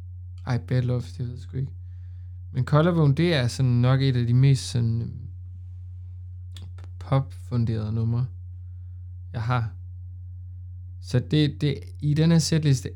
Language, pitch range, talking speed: Danish, 90-135 Hz, 135 wpm